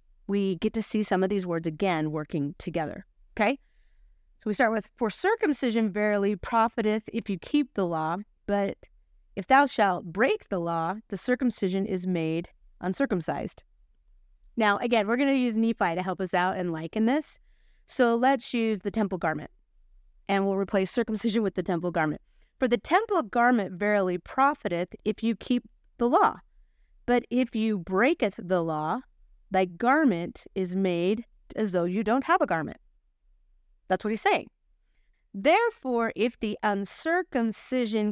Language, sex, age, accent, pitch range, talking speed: English, female, 30-49, American, 190-245 Hz, 160 wpm